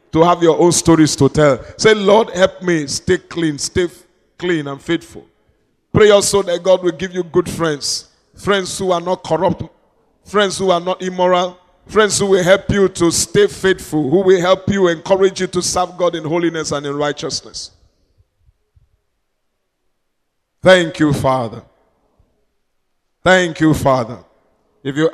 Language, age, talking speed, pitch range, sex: English, 50-69, 160 wpm, 135-175 Hz, male